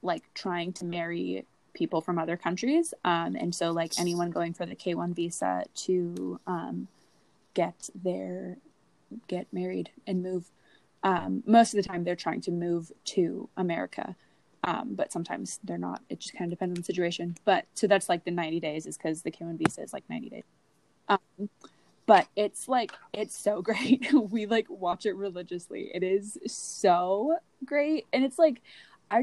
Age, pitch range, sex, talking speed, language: 20-39, 175-240 Hz, female, 175 wpm, English